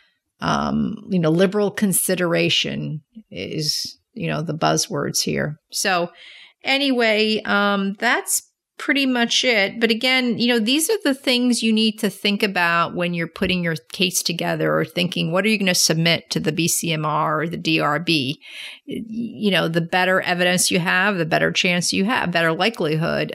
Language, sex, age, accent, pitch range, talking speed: English, female, 40-59, American, 165-210 Hz, 165 wpm